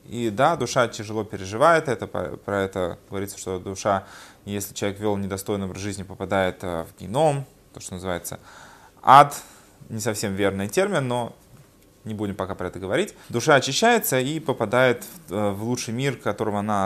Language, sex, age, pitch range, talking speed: Russian, male, 20-39, 100-120 Hz, 155 wpm